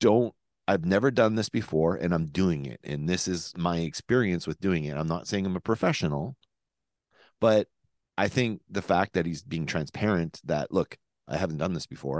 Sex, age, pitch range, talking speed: male, 40-59, 80-100 Hz, 195 wpm